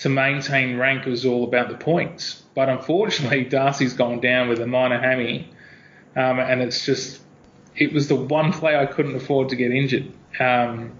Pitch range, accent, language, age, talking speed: 120-150 Hz, Australian, English, 20-39, 180 wpm